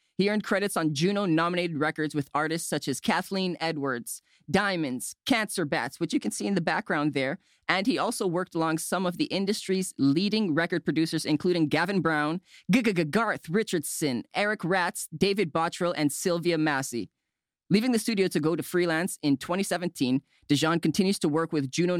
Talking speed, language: 170 wpm, English